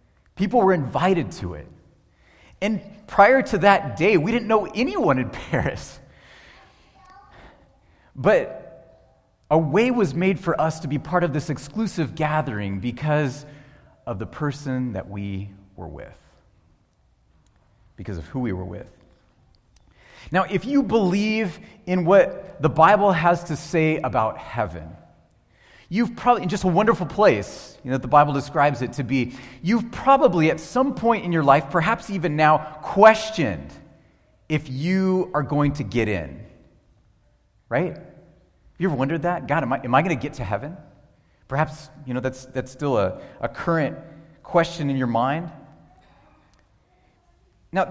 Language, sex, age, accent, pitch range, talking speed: English, male, 30-49, American, 130-190 Hz, 150 wpm